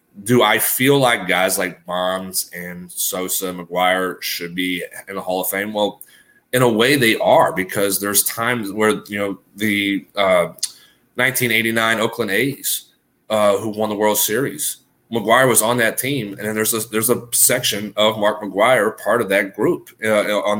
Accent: American